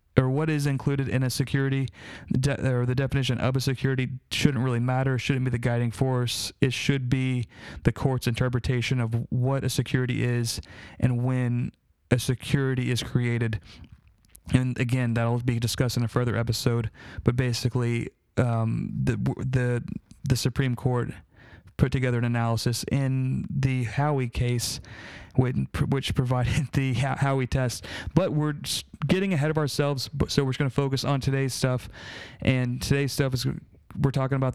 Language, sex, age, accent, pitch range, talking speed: English, male, 30-49, American, 120-140 Hz, 160 wpm